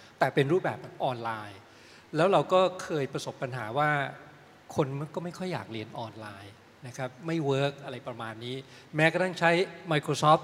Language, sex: Thai, male